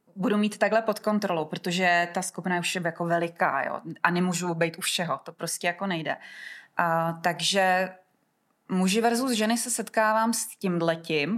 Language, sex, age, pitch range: Czech, female, 20-39, 175-210 Hz